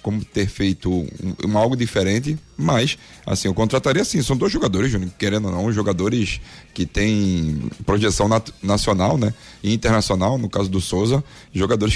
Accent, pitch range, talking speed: Brazilian, 100-125 Hz, 165 wpm